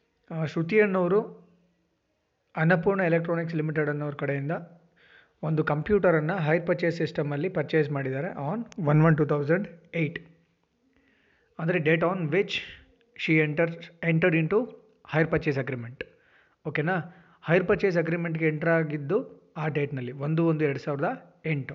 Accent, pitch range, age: native, 150-180 Hz, 30-49